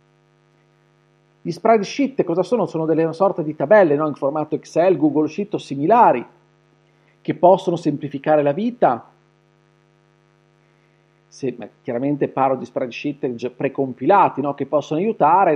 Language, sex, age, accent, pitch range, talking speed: Italian, male, 40-59, native, 150-190 Hz, 125 wpm